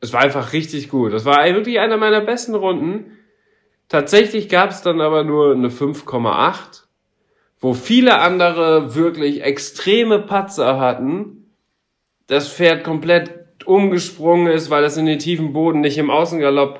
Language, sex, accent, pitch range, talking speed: German, male, German, 135-175 Hz, 145 wpm